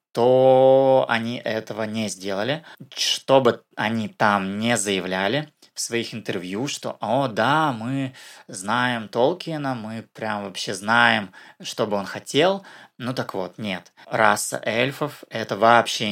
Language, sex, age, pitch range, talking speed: Russian, male, 20-39, 105-120 Hz, 130 wpm